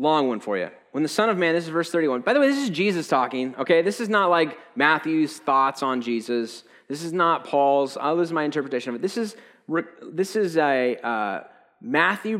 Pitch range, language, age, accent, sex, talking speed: 125-170 Hz, English, 30-49, American, male, 225 wpm